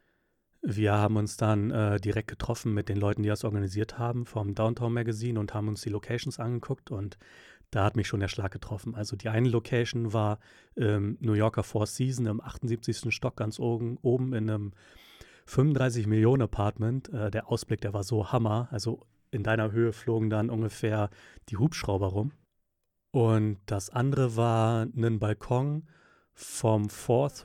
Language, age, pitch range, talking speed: German, 30-49, 105-120 Hz, 165 wpm